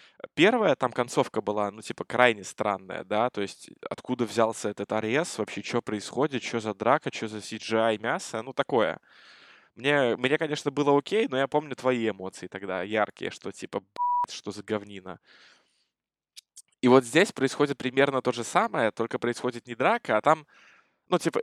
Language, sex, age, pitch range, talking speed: Russian, male, 20-39, 110-145 Hz, 165 wpm